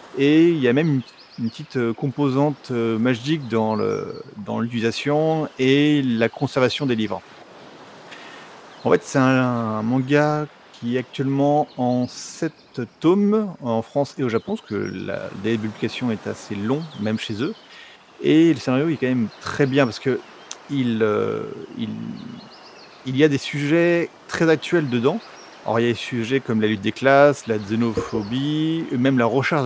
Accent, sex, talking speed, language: French, male, 165 wpm, French